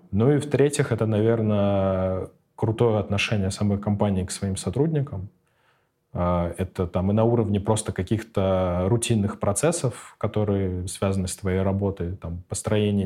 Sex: male